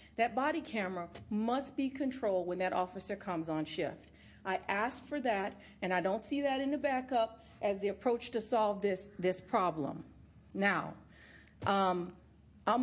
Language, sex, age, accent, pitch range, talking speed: English, female, 40-59, American, 190-240 Hz, 165 wpm